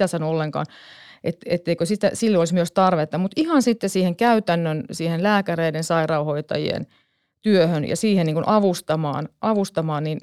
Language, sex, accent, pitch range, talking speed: Finnish, female, native, 165-205 Hz, 135 wpm